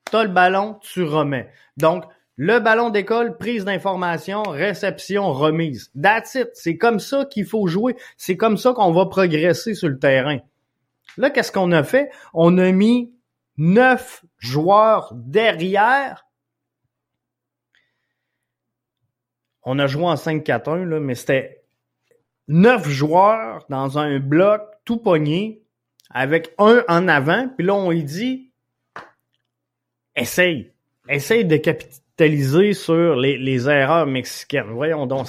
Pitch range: 150-220 Hz